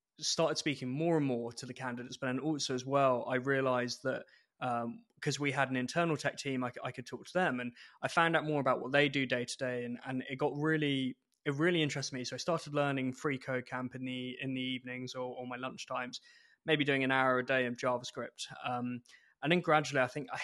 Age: 20-39